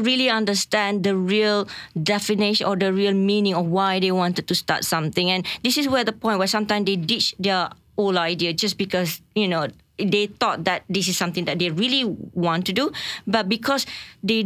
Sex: female